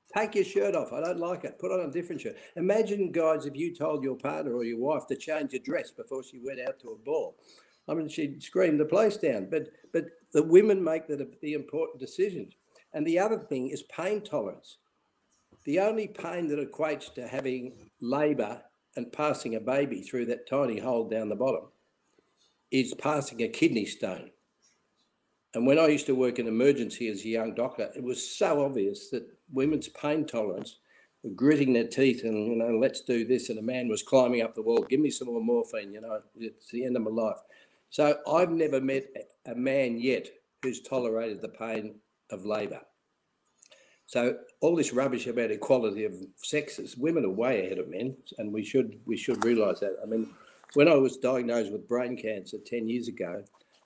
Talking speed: 200 wpm